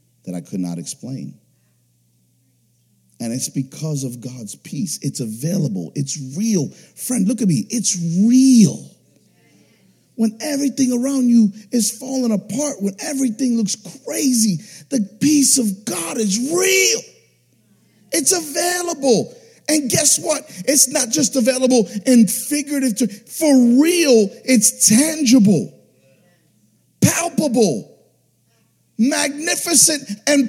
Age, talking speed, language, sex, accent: 50-69, 115 wpm, English, male, American